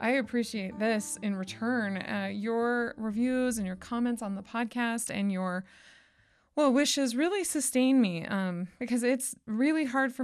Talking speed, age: 160 wpm, 20-39